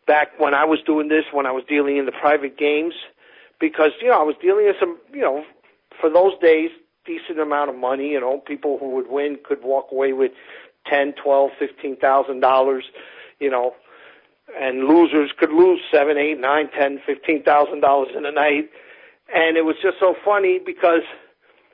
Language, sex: English, male